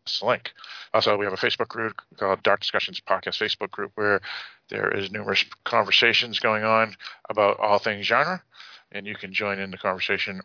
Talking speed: 180 wpm